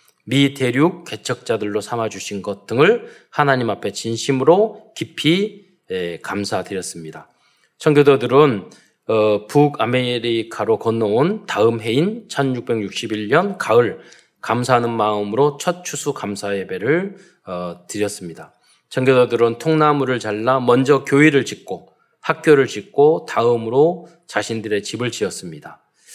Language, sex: Korean, male